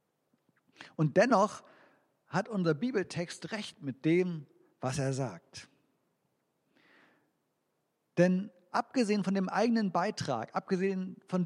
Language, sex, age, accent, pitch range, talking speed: German, male, 50-69, German, 150-195 Hz, 100 wpm